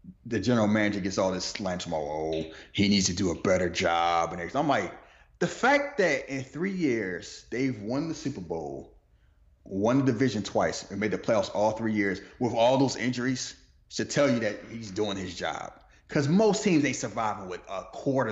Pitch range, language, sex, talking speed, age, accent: 95-150 Hz, English, male, 200 wpm, 30-49, American